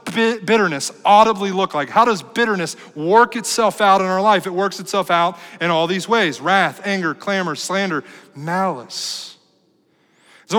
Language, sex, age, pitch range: English, male, 40-59, 155-200 Hz